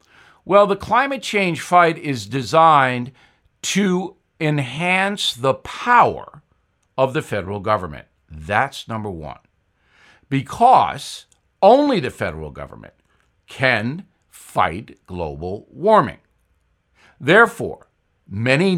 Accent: American